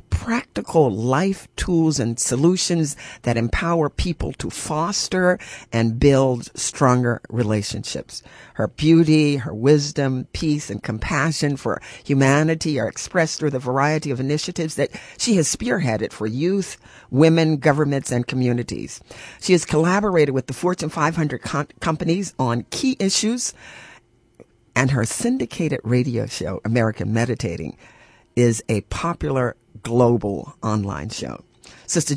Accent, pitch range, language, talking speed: American, 120-160 Hz, English, 120 wpm